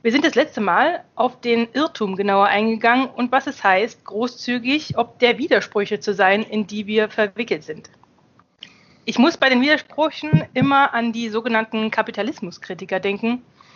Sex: female